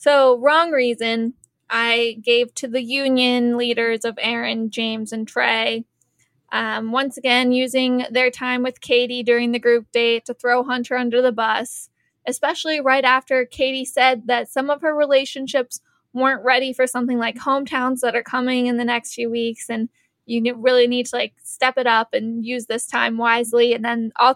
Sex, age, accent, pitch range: female, 20-39, American, 235-265 Hz